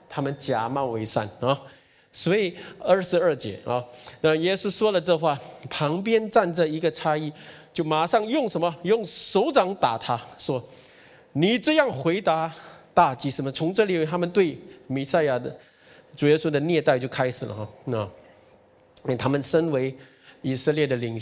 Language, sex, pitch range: Chinese, male, 130-175 Hz